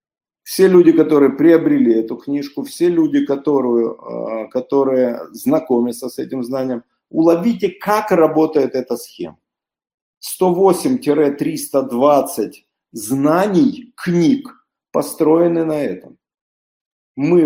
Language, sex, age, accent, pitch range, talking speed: Russian, male, 50-69, native, 135-190 Hz, 90 wpm